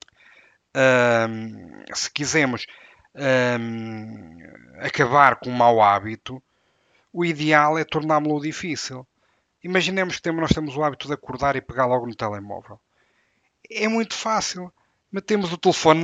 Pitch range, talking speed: 125-155 Hz, 125 wpm